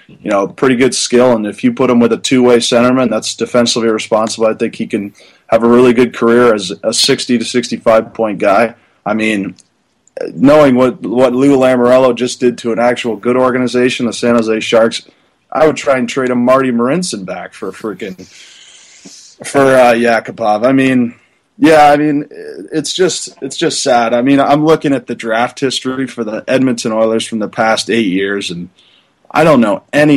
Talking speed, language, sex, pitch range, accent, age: 195 wpm, English, male, 115-135 Hz, American, 20-39